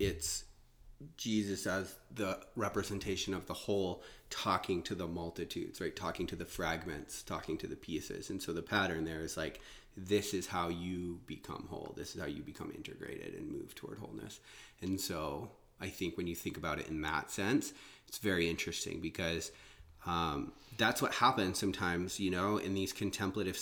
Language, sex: English, male